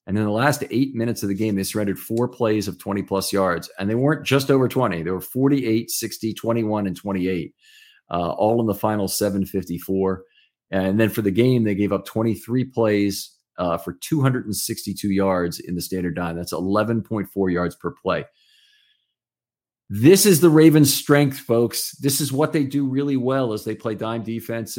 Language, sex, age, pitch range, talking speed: English, male, 40-59, 95-120 Hz, 185 wpm